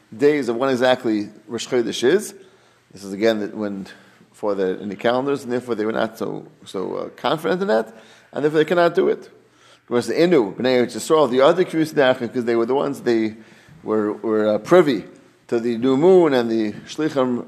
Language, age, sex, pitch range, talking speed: English, 40-59, male, 120-170 Hz, 195 wpm